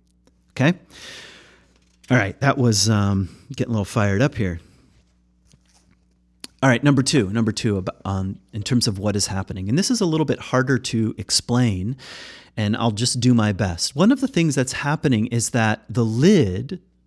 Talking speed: 175 wpm